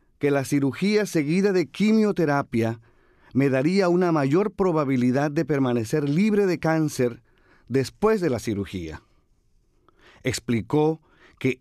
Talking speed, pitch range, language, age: 115 wpm, 135-185 Hz, Spanish, 40-59